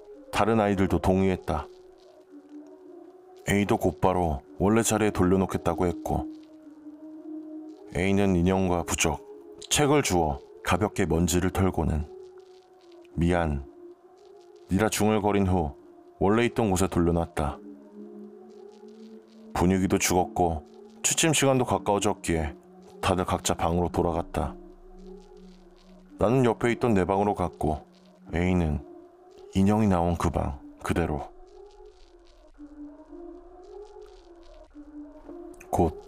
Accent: native